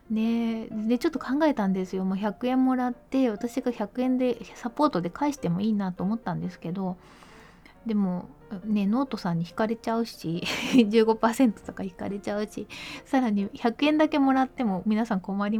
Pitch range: 185-250 Hz